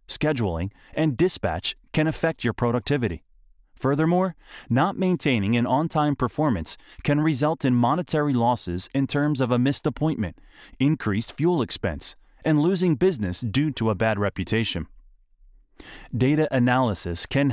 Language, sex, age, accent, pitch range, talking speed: English, male, 30-49, American, 110-145 Hz, 130 wpm